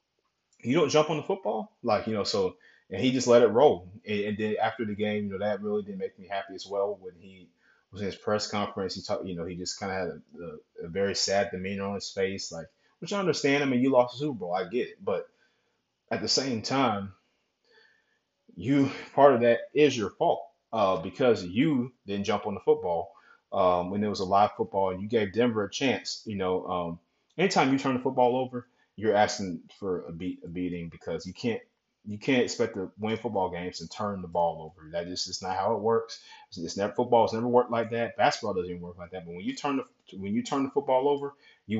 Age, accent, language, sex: 30-49, American, English, male